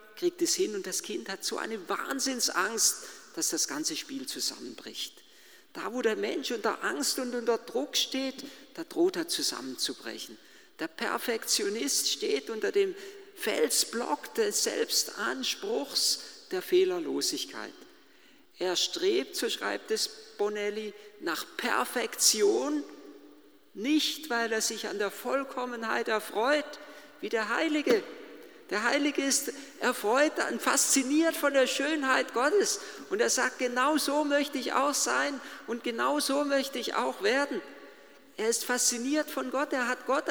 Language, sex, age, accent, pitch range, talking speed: German, male, 50-69, German, 240-370 Hz, 135 wpm